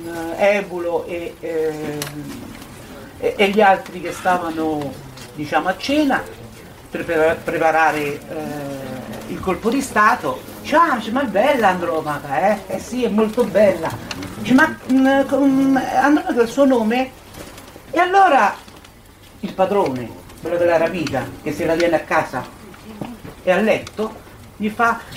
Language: Italian